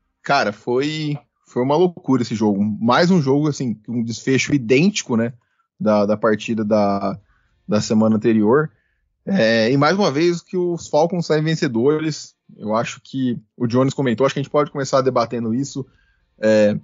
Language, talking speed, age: Portuguese, 170 wpm, 20-39